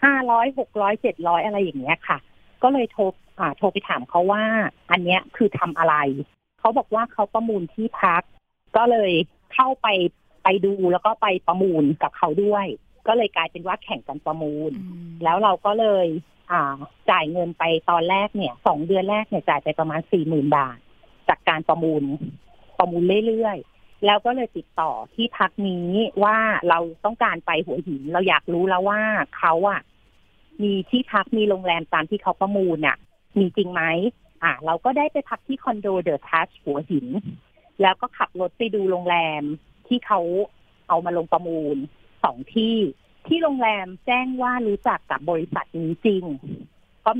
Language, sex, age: Thai, female, 30-49